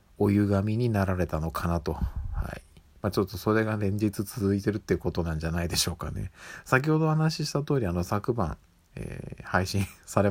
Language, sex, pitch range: Japanese, male, 85-100 Hz